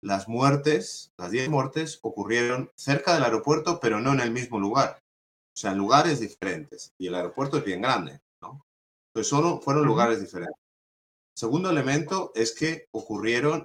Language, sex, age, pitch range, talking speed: Spanish, male, 30-49, 90-120 Hz, 165 wpm